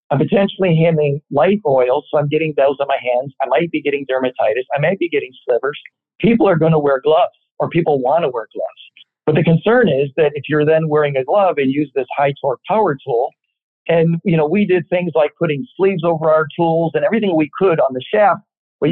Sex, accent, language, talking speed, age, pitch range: male, American, English, 230 wpm, 50-69, 150-185 Hz